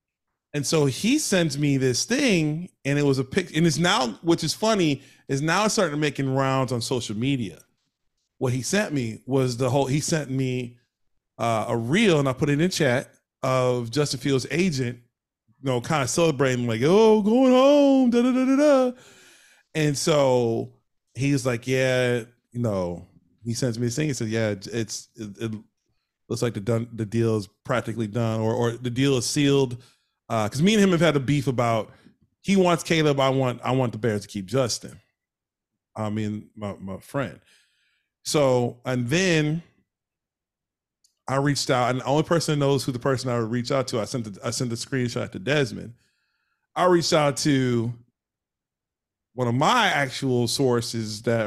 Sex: male